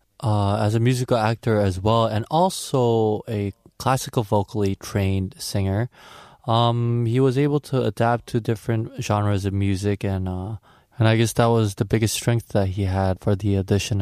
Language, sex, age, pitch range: Korean, male, 20-39, 100-125 Hz